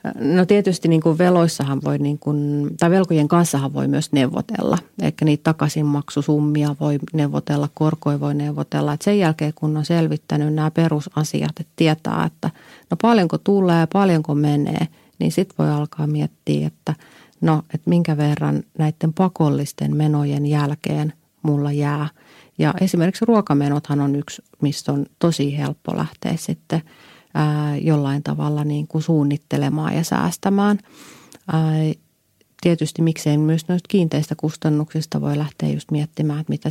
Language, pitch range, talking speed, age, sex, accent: Finnish, 145-165 Hz, 135 wpm, 40-59, female, native